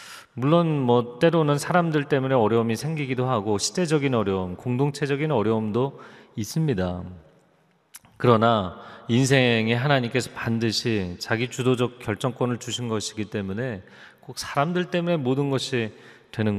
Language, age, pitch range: Korean, 30-49, 105-140 Hz